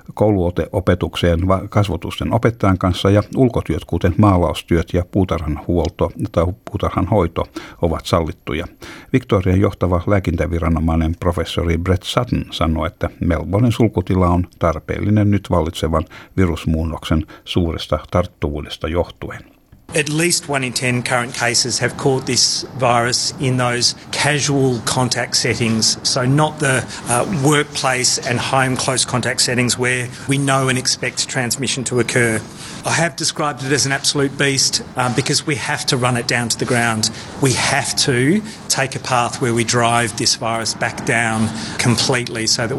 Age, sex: 60-79, male